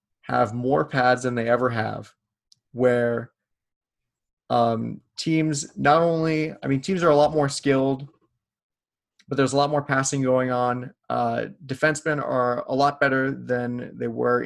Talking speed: 155 wpm